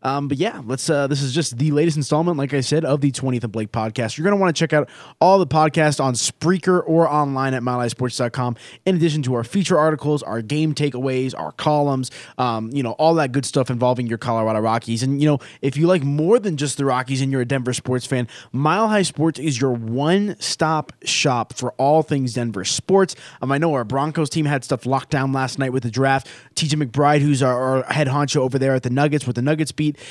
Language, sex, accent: English, male, American